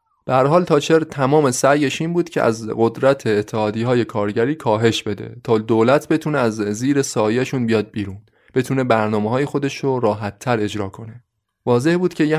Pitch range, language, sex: 110-140 Hz, Persian, male